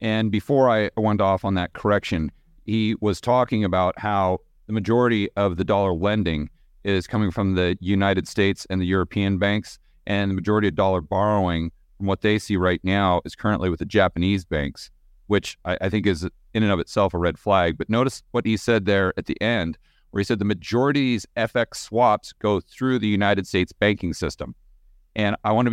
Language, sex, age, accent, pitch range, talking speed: English, male, 40-59, American, 90-110 Hz, 205 wpm